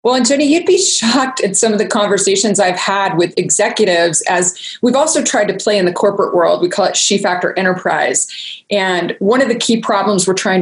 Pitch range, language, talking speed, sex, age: 195-275 Hz, English, 220 wpm, female, 20-39